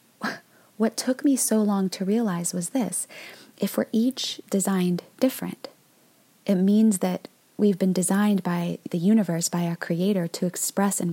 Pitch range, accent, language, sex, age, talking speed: 180-210 Hz, American, English, female, 20-39, 155 wpm